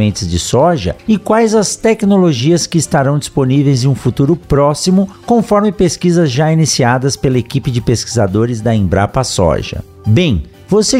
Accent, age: Brazilian, 50-69